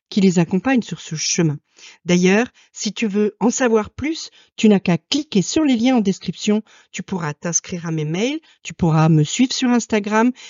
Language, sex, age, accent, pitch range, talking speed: French, female, 50-69, French, 170-220 Hz, 195 wpm